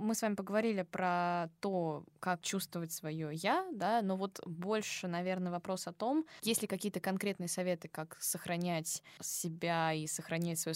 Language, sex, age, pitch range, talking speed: Russian, female, 20-39, 165-200 Hz, 160 wpm